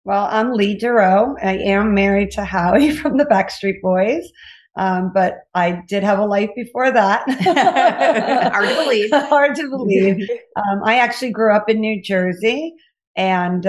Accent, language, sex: American, English, female